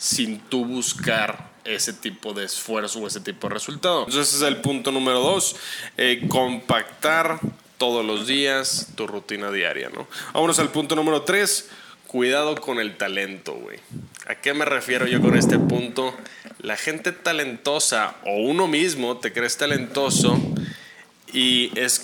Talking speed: 155 wpm